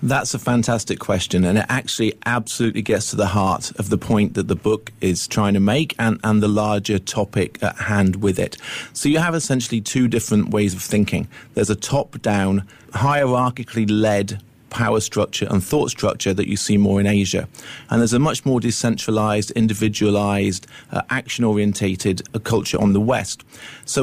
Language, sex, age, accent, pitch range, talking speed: English, male, 40-59, British, 105-135 Hz, 170 wpm